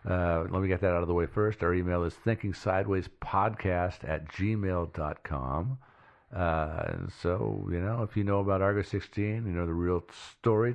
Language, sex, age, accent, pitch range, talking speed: English, male, 50-69, American, 80-100 Hz, 180 wpm